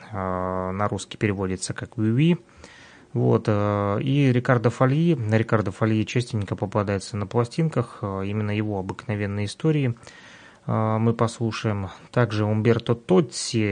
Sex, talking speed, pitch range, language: male, 110 wpm, 100-120 Hz, Russian